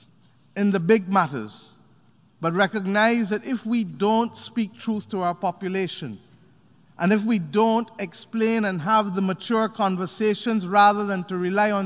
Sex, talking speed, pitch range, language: male, 150 wpm, 155-205 Hz, English